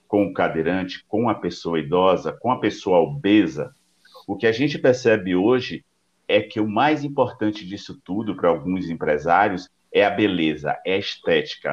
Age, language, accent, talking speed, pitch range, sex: 50-69, Portuguese, Brazilian, 170 wpm, 85-115 Hz, male